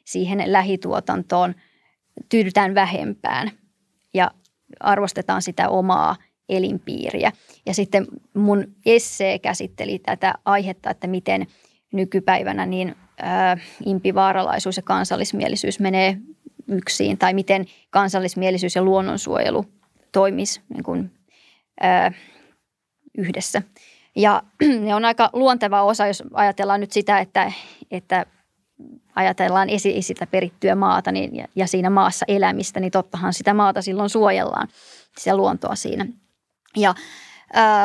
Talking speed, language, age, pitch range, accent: 110 wpm, Finnish, 20-39, 190-210 Hz, native